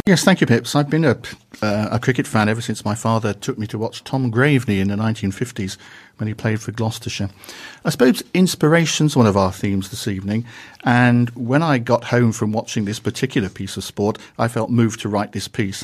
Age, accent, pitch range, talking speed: 50-69, British, 105-125 Hz, 210 wpm